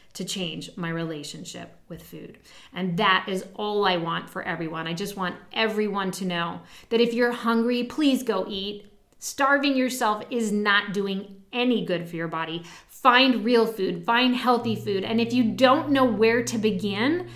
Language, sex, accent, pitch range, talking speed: English, female, American, 190-260 Hz, 175 wpm